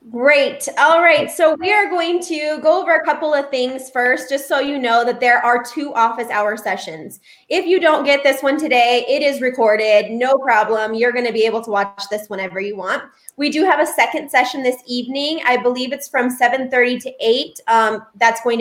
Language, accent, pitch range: English, American, 230-295 Hz